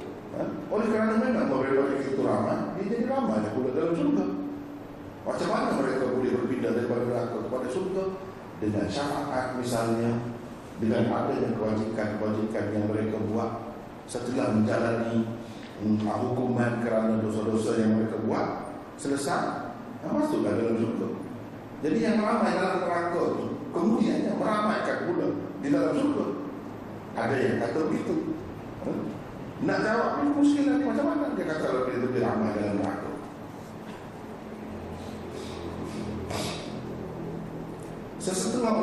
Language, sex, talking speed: Malay, male, 120 wpm